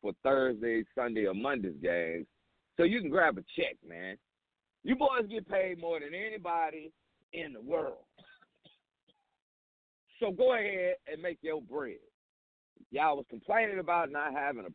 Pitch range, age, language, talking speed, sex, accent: 165-275 Hz, 50-69, English, 150 wpm, male, American